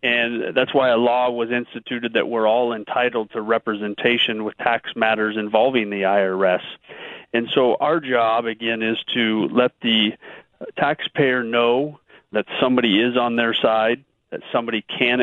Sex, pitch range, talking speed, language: male, 115-135 Hz, 155 wpm, English